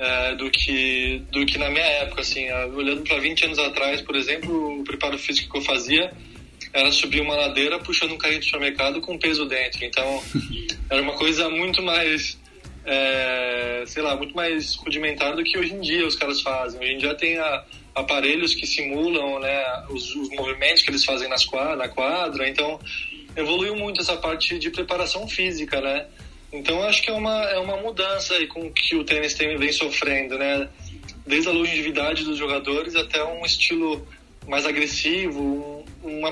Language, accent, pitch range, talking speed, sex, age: Portuguese, Brazilian, 140-170 Hz, 185 wpm, male, 20-39